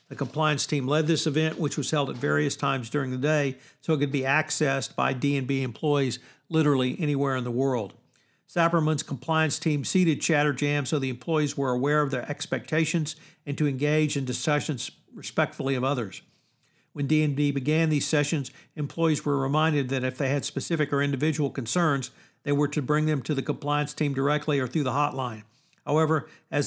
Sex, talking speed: male, 185 wpm